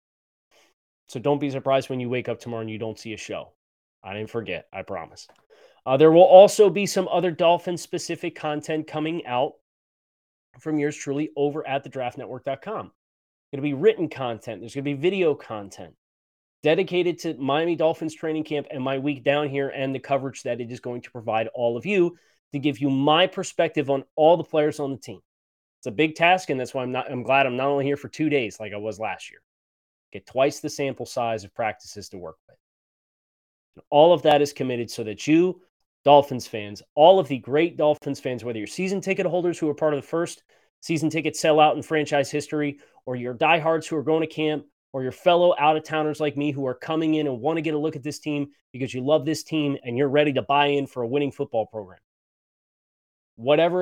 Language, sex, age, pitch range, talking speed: English, male, 30-49, 125-155 Hz, 215 wpm